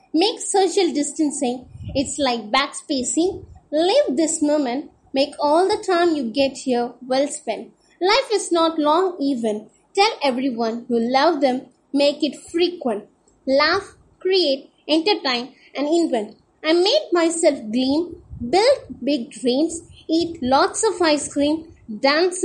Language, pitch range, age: English, 265-350 Hz, 20-39